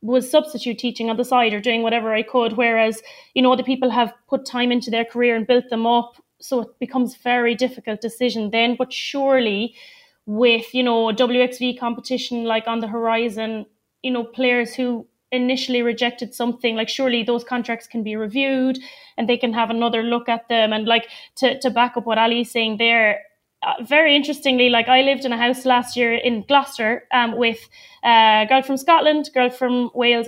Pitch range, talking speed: 225-255 Hz, 195 wpm